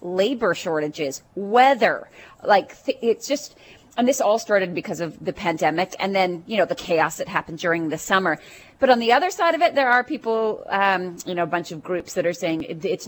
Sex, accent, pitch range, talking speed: female, American, 170-225 Hz, 210 wpm